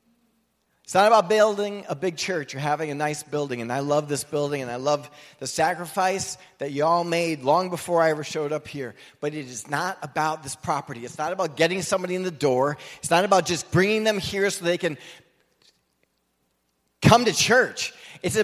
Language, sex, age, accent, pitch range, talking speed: English, male, 30-49, American, 125-185 Hz, 200 wpm